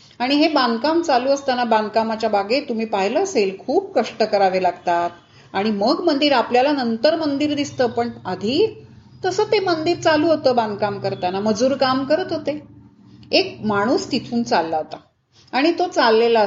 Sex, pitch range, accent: female, 225-315 Hz, native